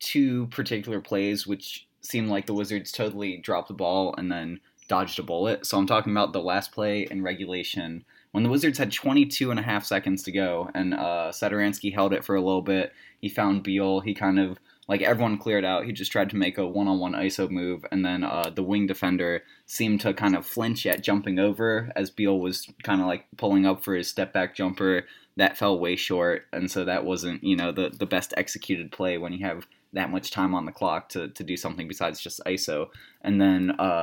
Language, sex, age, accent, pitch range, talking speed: English, male, 20-39, American, 90-105 Hz, 220 wpm